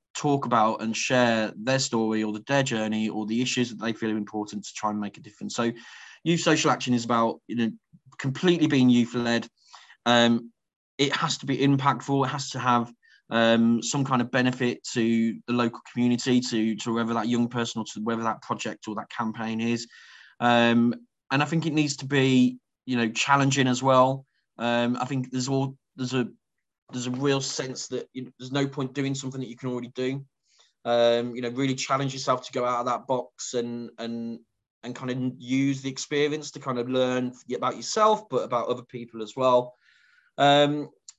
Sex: male